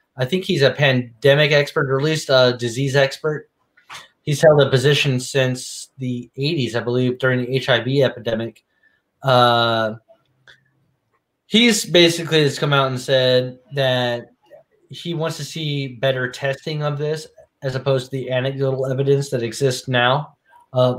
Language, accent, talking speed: English, American, 150 wpm